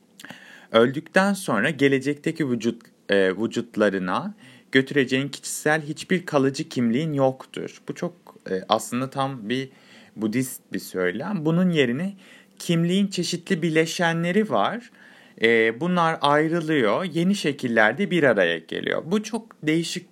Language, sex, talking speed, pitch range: Turkish, male, 115 wpm, 120-180 Hz